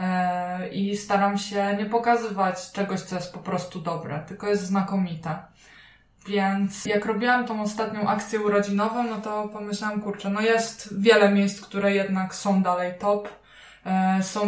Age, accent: 20-39, native